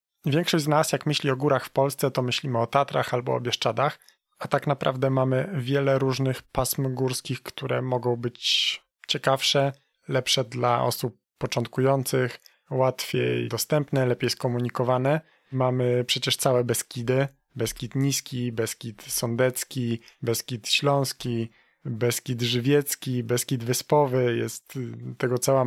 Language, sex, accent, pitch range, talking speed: Polish, male, native, 120-140 Hz, 125 wpm